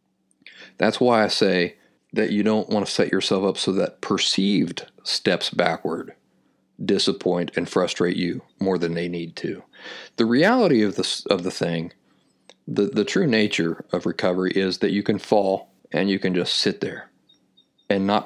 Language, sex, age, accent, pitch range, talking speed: English, male, 40-59, American, 95-110 Hz, 170 wpm